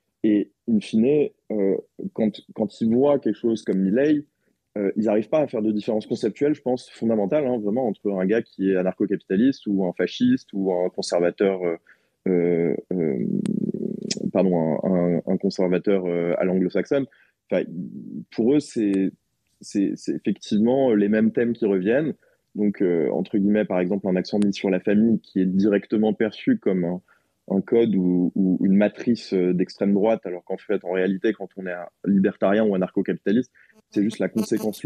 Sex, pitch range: male, 95-115 Hz